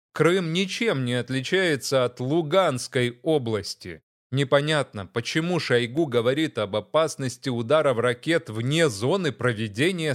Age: 30-49